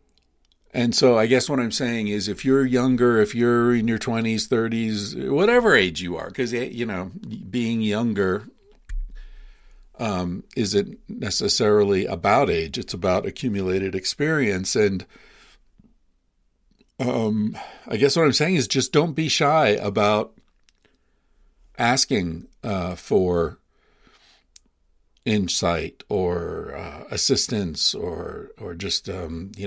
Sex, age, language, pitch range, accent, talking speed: male, 50-69, English, 85-115 Hz, American, 120 wpm